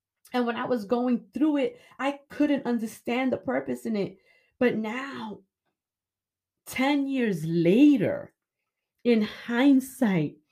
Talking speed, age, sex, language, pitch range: 120 wpm, 30-49, female, English, 215-275 Hz